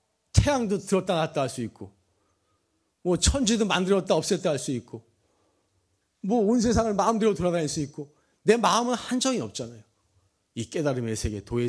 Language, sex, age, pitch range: Korean, male, 40-59, 100-160 Hz